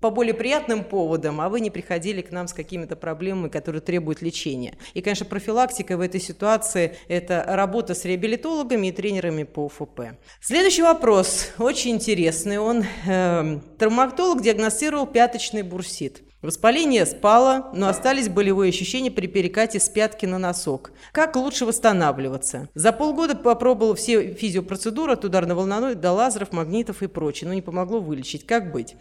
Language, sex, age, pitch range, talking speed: Russian, female, 40-59, 180-235 Hz, 150 wpm